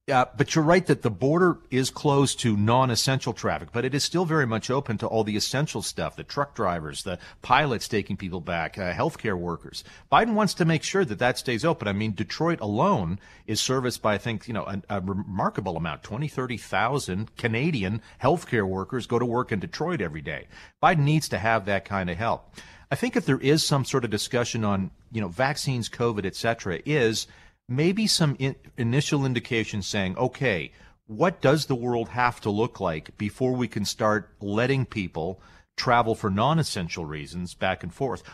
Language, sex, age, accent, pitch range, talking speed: English, male, 40-59, American, 105-140 Hz, 195 wpm